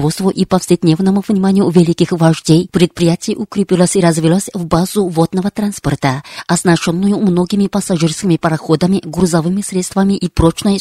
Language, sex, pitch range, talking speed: Russian, female, 170-200 Hz, 115 wpm